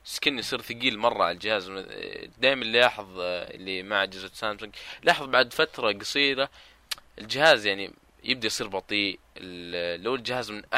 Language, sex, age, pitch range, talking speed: Arabic, male, 20-39, 85-110 Hz, 130 wpm